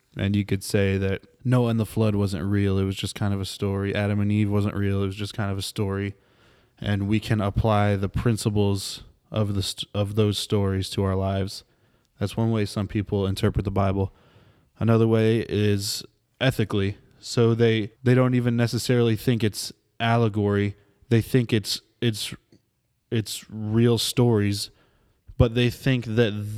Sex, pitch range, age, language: male, 100-115 Hz, 20-39, English